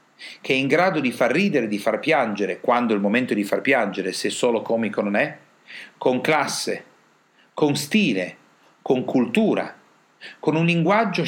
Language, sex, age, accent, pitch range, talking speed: Italian, male, 40-59, native, 110-165 Hz, 165 wpm